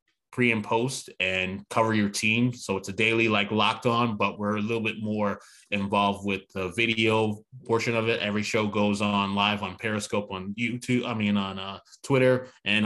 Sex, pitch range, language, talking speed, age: male, 100-115 Hz, English, 195 wpm, 20-39